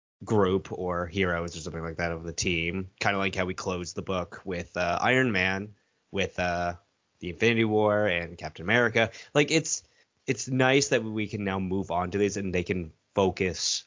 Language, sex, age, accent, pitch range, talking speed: English, male, 20-39, American, 90-115 Hz, 200 wpm